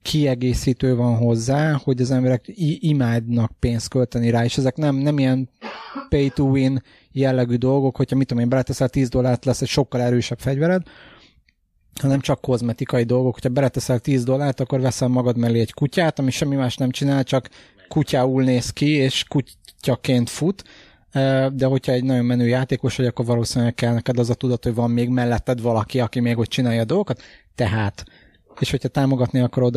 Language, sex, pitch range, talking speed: Hungarian, male, 120-135 Hz, 175 wpm